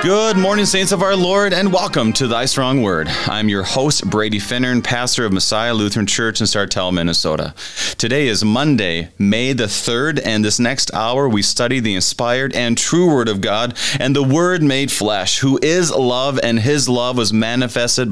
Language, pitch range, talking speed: English, 100-135 Hz, 190 wpm